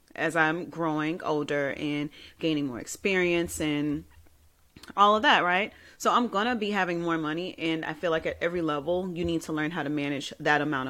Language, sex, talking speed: English, female, 205 wpm